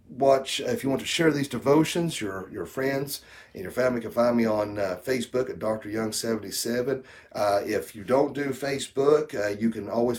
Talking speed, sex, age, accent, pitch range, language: 200 wpm, male, 40-59, American, 110-145 Hz, English